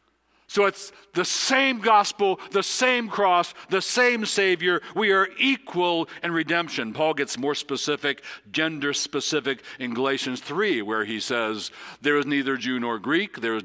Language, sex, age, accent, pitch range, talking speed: English, male, 60-79, American, 120-195 Hz, 155 wpm